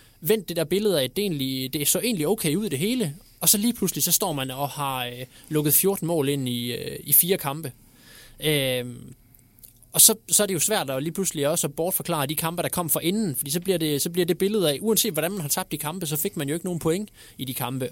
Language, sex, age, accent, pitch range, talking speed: Danish, male, 20-39, native, 135-180 Hz, 270 wpm